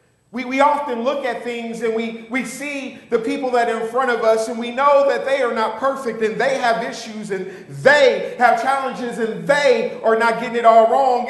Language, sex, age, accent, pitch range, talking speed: English, male, 40-59, American, 220-270 Hz, 225 wpm